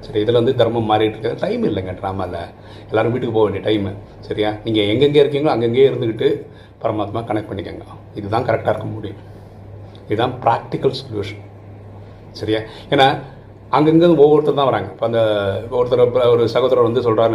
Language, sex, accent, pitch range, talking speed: Tamil, male, native, 105-125 Hz, 150 wpm